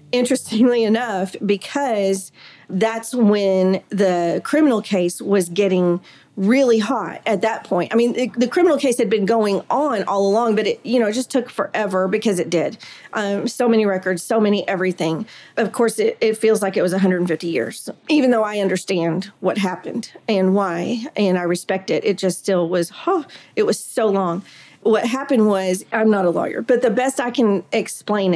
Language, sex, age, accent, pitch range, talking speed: English, female, 40-59, American, 190-240 Hz, 190 wpm